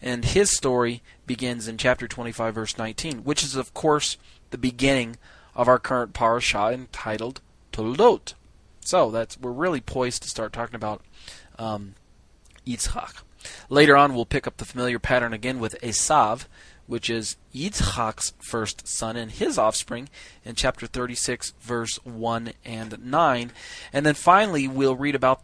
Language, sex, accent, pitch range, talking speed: English, male, American, 110-130 Hz, 150 wpm